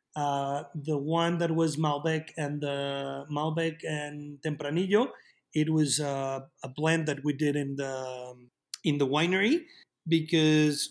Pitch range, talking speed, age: 140-160 Hz, 140 wpm, 30-49